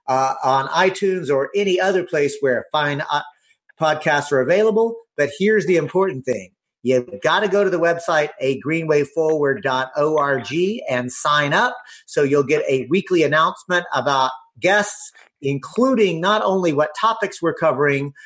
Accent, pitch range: American, 145-195 Hz